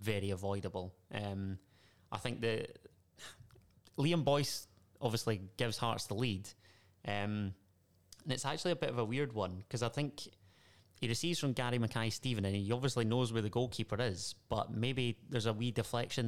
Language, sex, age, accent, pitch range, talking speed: English, male, 20-39, British, 100-115 Hz, 170 wpm